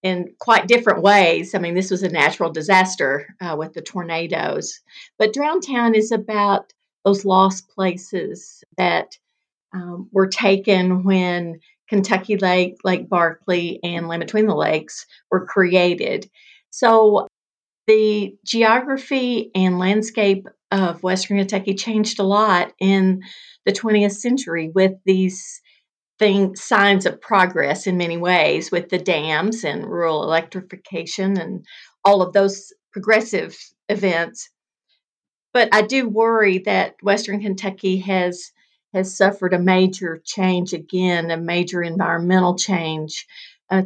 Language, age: English, 50-69